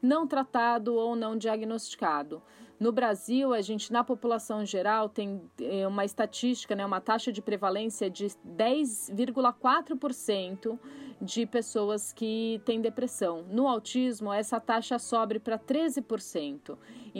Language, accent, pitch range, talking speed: Portuguese, Brazilian, 210-265 Hz, 120 wpm